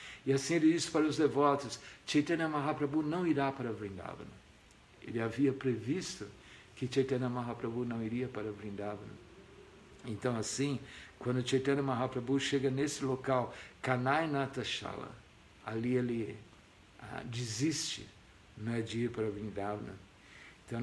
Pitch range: 110-135 Hz